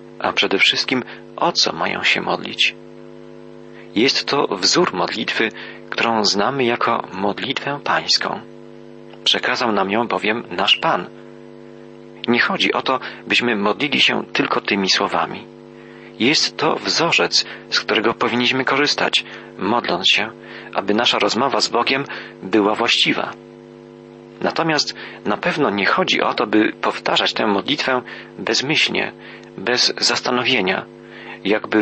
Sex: male